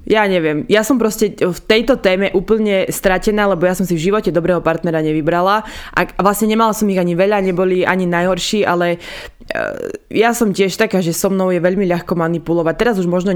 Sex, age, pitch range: female, 20-39, 170-200 Hz